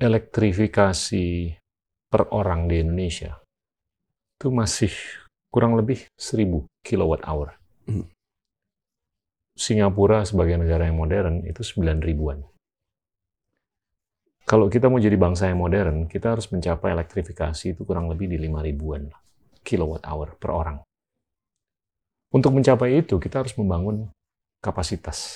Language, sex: Indonesian, male